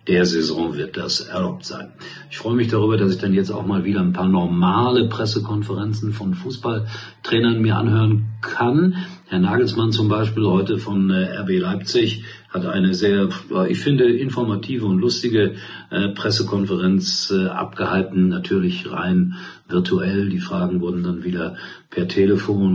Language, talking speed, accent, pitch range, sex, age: German, 140 wpm, German, 100-140 Hz, male, 50-69